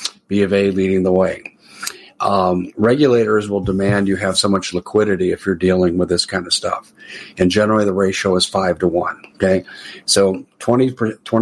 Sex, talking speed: male, 180 wpm